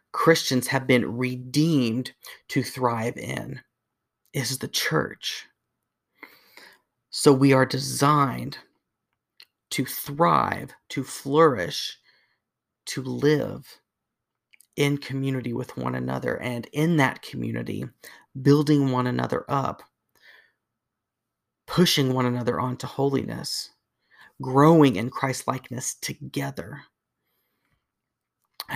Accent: American